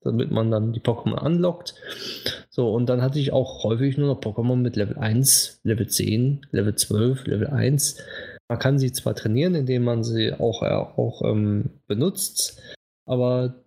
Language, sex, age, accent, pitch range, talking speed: German, male, 20-39, German, 110-130 Hz, 165 wpm